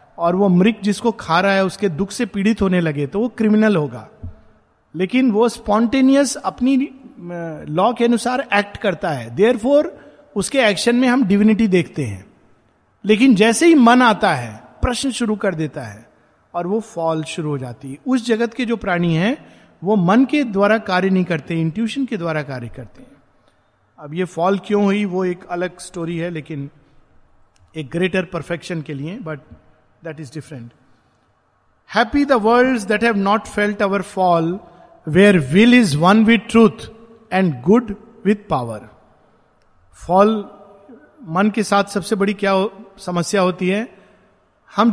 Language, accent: Hindi, native